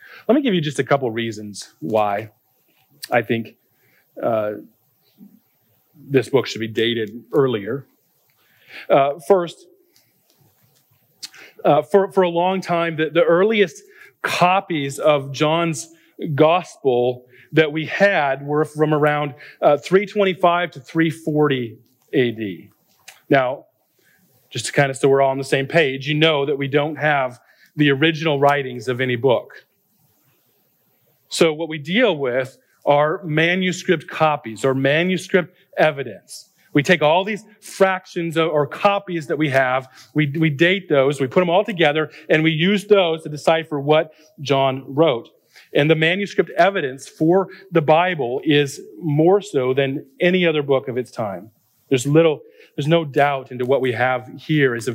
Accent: American